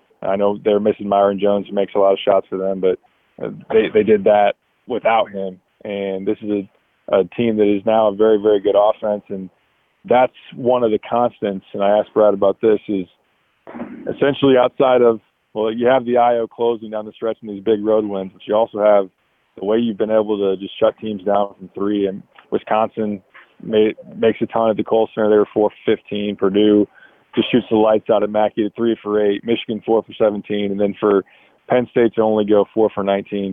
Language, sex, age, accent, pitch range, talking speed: English, male, 20-39, American, 100-110 Hz, 215 wpm